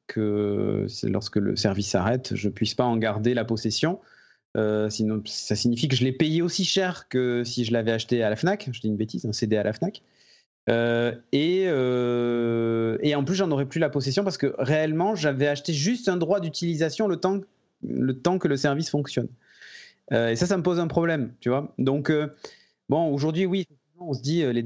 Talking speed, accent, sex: 215 wpm, French, male